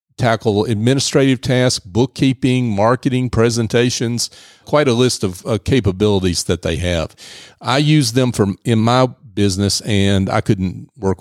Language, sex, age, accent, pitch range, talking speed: English, male, 50-69, American, 100-125 Hz, 140 wpm